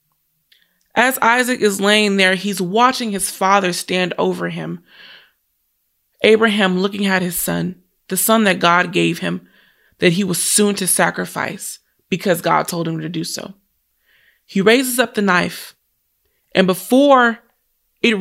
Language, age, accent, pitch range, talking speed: English, 20-39, American, 180-220 Hz, 145 wpm